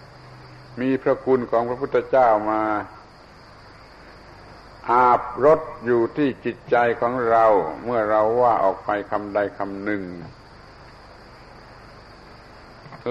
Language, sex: Thai, male